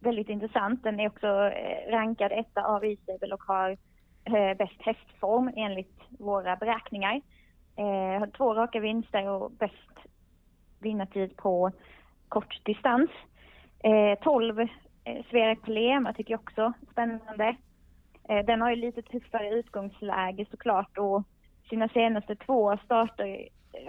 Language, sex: Swedish, female